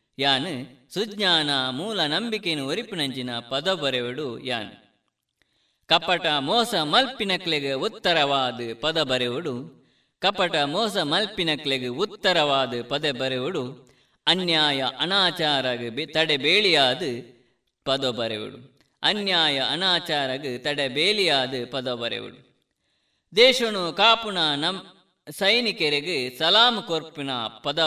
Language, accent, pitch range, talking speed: Kannada, native, 130-180 Hz, 45 wpm